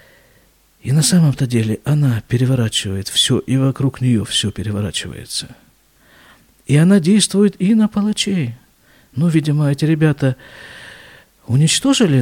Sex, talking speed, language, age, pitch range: male, 115 wpm, Russian, 50-69, 115-180 Hz